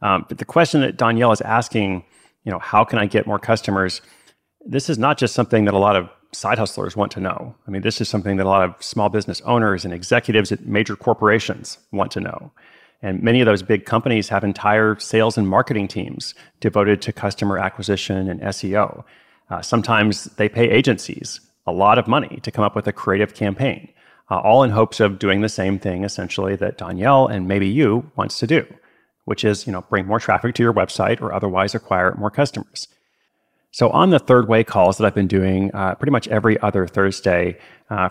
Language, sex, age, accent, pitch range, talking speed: English, male, 30-49, American, 95-110 Hz, 210 wpm